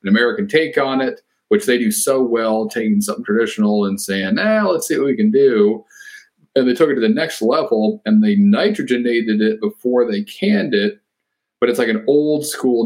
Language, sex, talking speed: English, male, 200 wpm